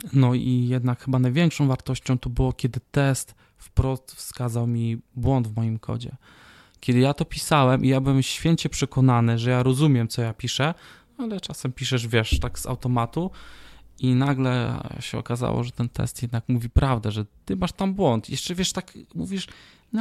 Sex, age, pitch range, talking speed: male, 20-39, 120-140 Hz, 175 wpm